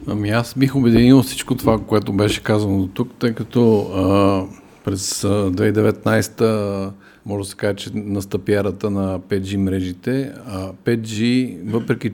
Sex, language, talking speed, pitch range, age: male, Bulgarian, 145 wpm, 100-110 Hz, 50-69